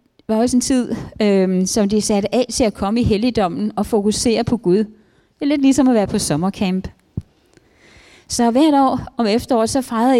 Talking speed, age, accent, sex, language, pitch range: 200 wpm, 30-49, native, female, Danish, 200-250 Hz